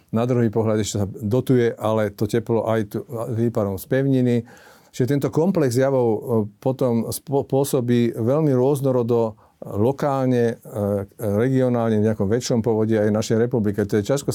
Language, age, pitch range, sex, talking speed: Slovak, 50-69, 110-125 Hz, male, 140 wpm